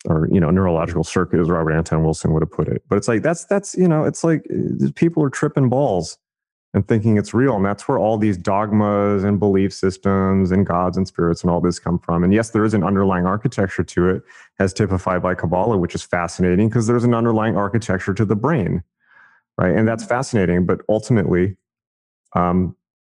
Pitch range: 90-115 Hz